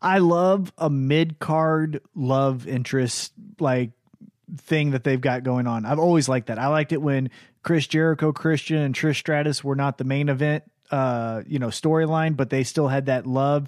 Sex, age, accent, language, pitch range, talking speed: male, 30-49, American, English, 135-160 Hz, 190 wpm